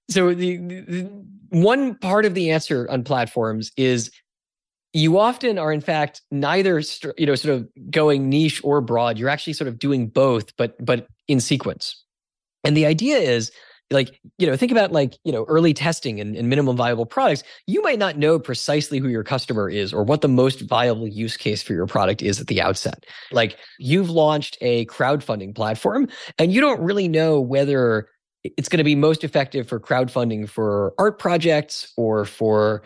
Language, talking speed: English, 190 wpm